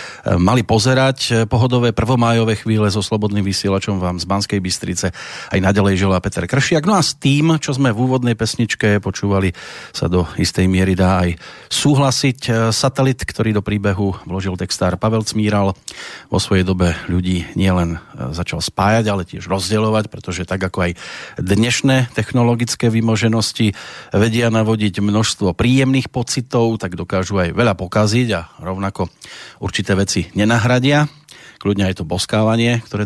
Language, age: Slovak, 40-59